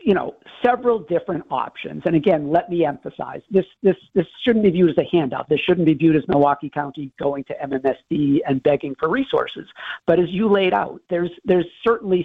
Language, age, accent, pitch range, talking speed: English, 50-69, American, 145-180 Hz, 200 wpm